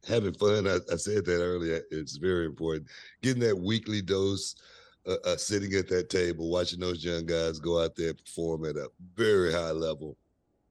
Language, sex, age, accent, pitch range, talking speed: English, male, 60-79, American, 85-110 Hz, 190 wpm